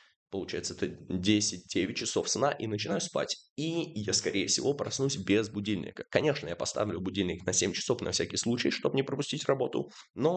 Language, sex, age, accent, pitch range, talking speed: Russian, male, 20-39, native, 105-120 Hz, 175 wpm